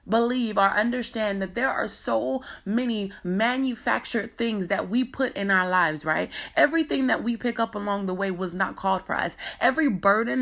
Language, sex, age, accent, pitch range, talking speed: English, female, 20-39, American, 195-235 Hz, 185 wpm